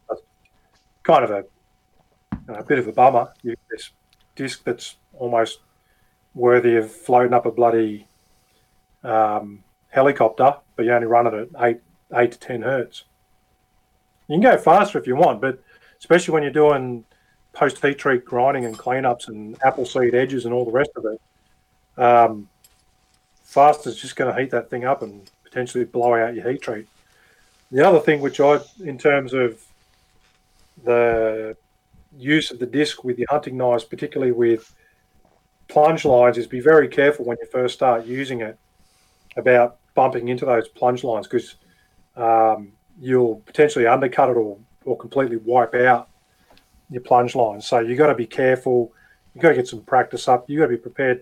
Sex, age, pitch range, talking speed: male, 40-59, 115-130 Hz, 170 wpm